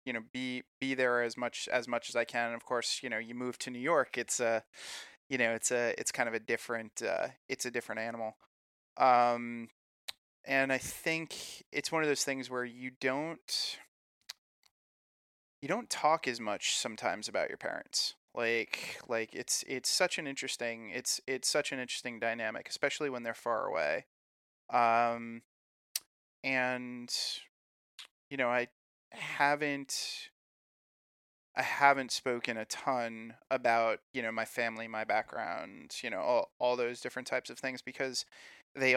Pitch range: 115-135 Hz